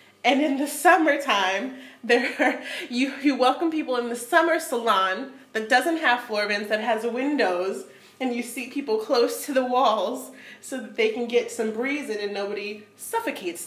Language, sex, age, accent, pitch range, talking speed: English, female, 30-49, American, 195-275 Hz, 180 wpm